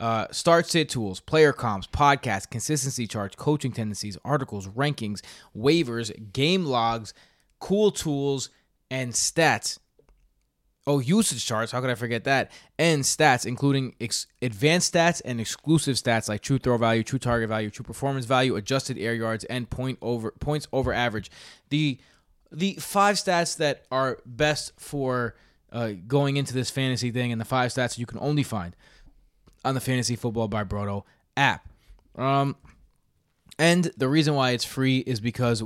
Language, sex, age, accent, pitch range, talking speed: English, male, 20-39, American, 115-140 Hz, 160 wpm